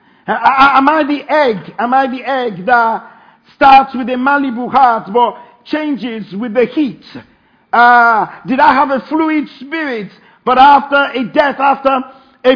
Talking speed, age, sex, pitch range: 155 wpm, 50-69, male, 235-275 Hz